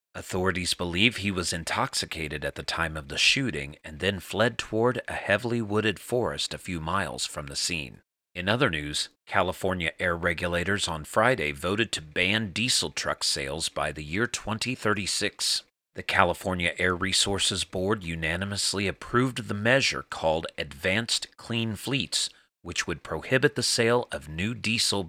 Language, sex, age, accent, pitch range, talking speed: English, male, 40-59, American, 85-110 Hz, 155 wpm